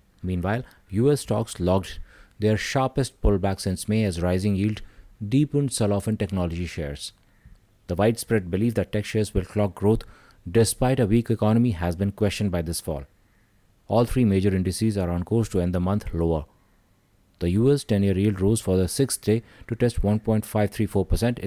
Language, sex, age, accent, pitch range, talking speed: English, male, 30-49, Indian, 95-110 Hz, 170 wpm